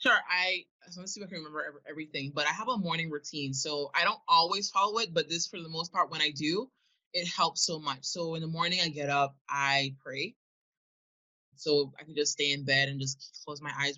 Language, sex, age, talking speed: English, male, 20-39, 245 wpm